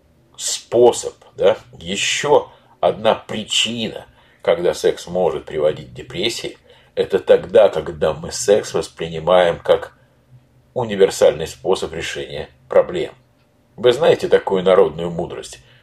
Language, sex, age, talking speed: Russian, male, 50-69, 100 wpm